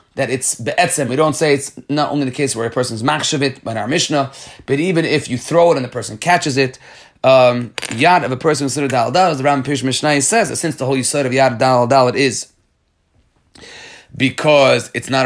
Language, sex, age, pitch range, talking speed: English, male, 30-49, 125-160 Hz, 235 wpm